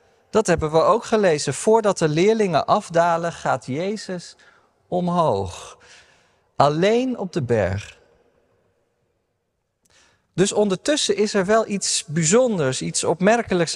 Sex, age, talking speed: male, 50-69, 110 wpm